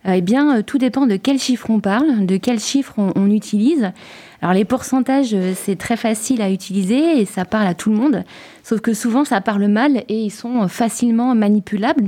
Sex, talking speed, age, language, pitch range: female, 205 wpm, 20-39, French, 200-255 Hz